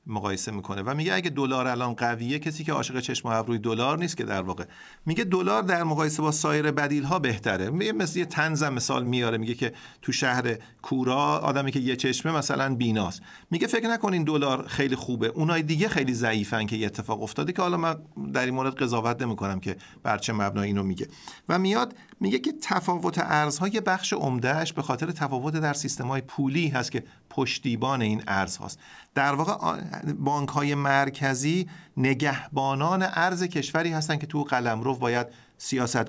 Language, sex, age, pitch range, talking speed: Persian, male, 40-59, 125-155 Hz, 175 wpm